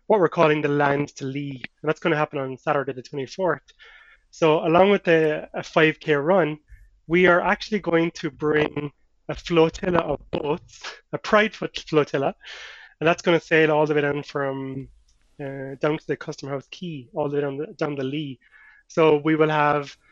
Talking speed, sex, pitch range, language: 190 wpm, male, 140-165 Hz, English